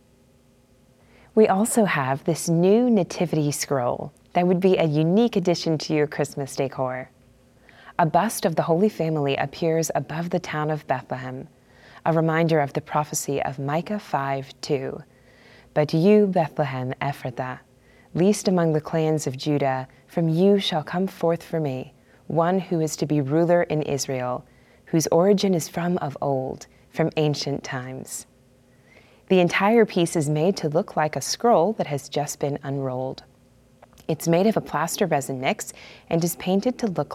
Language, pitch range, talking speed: English, 130-175 Hz, 160 wpm